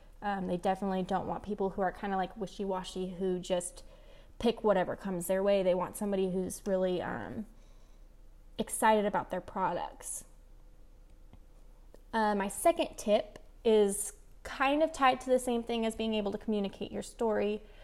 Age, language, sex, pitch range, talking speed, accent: 20-39, English, female, 195-225 Hz, 160 wpm, American